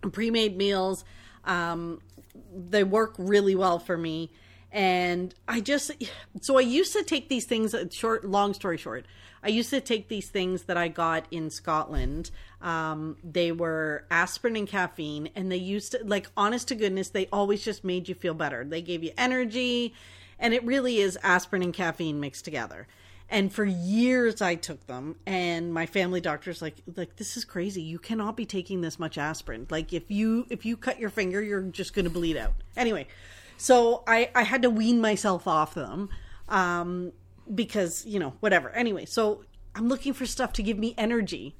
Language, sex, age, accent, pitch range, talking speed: English, female, 40-59, American, 165-225 Hz, 185 wpm